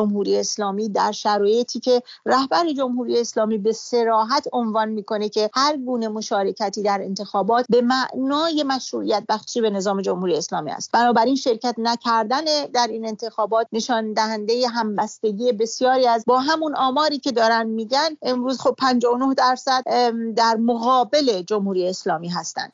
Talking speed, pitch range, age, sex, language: 140 wpm, 225-265 Hz, 40-59, female, English